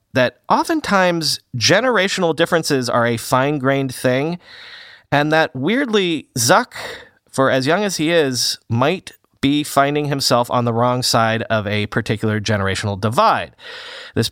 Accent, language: American, English